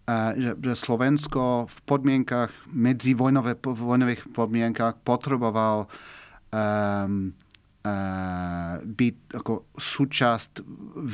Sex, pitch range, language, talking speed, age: male, 110-135 Hz, Slovak, 80 wpm, 40-59